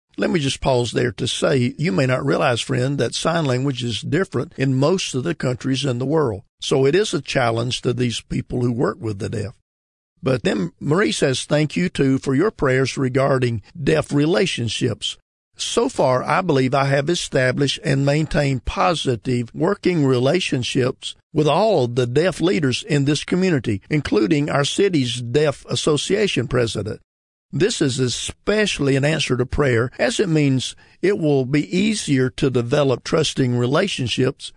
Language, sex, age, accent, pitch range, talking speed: English, male, 50-69, American, 125-150 Hz, 165 wpm